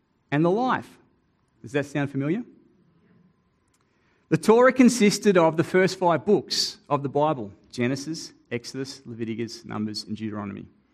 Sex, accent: male, Australian